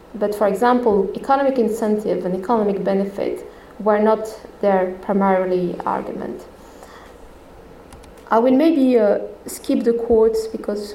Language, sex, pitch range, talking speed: English, female, 205-260 Hz, 115 wpm